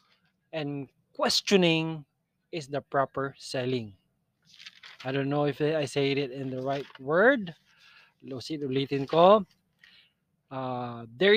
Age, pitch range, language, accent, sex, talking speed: 20-39, 145-185 Hz, Filipino, native, male, 110 wpm